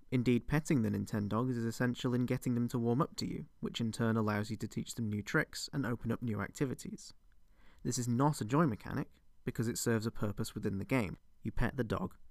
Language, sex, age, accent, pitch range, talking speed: English, male, 20-39, British, 105-130 Hz, 230 wpm